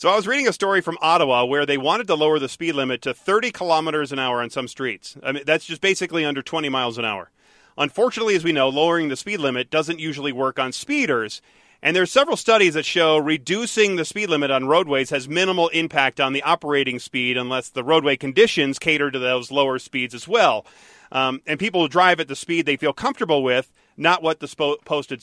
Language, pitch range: English, 130-170 Hz